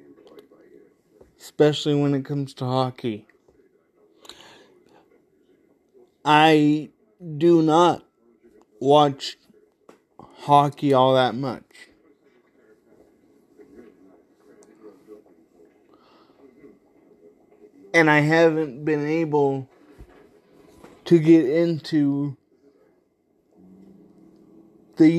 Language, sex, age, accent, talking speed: English, male, 30-49, American, 55 wpm